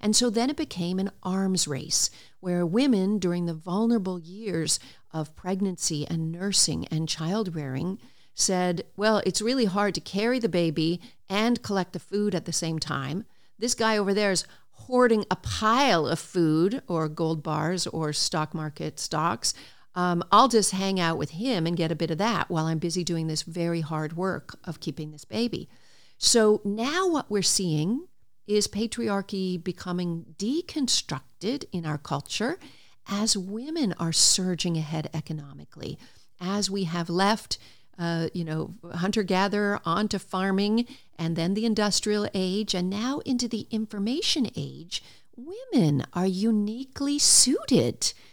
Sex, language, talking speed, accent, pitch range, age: female, English, 150 wpm, American, 165-220 Hz, 50-69